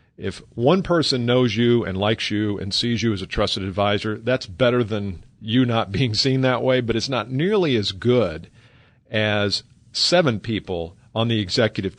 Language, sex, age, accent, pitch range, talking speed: English, male, 50-69, American, 105-130 Hz, 180 wpm